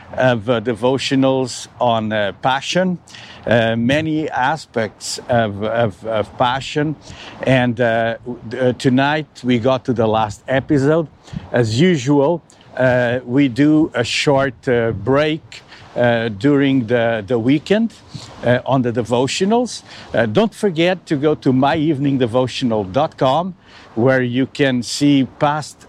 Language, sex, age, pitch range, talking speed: English, male, 50-69, 120-150 Hz, 120 wpm